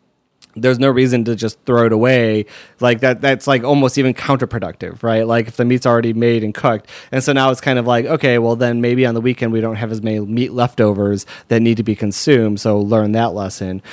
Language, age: English, 30-49